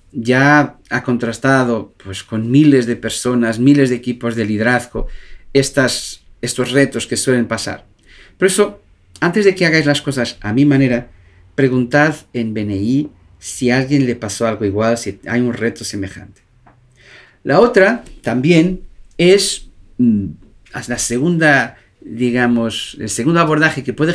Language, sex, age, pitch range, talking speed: Spanish, male, 50-69, 115-165 Hz, 135 wpm